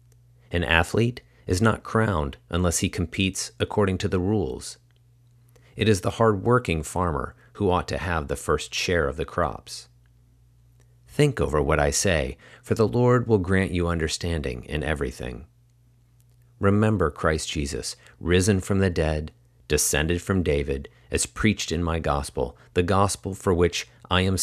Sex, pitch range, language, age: male, 75-105 Hz, English, 40-59